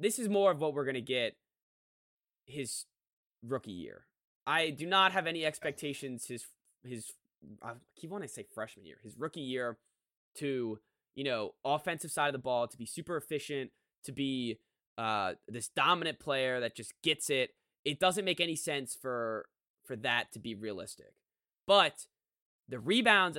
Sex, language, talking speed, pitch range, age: male, English, 170 wpm, 125-170 Hz, 20-39